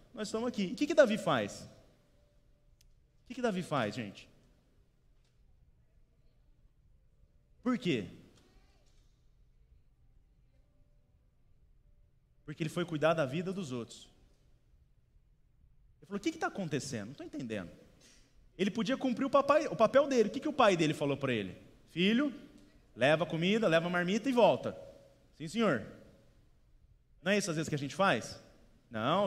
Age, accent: 30-49, Brazilian